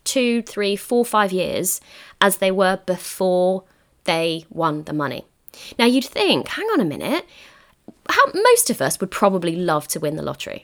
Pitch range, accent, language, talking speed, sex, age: 190-305 Hz, British, English, 170 wpm, female, 20-39